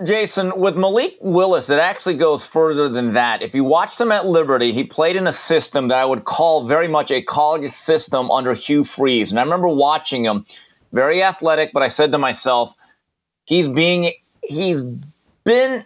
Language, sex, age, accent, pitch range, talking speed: English, male, 40-59, American, 145-185 Hz, 185 wpm